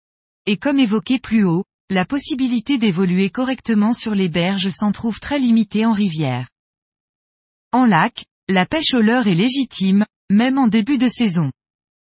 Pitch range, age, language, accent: 180-245 Hz, 20-39, French, French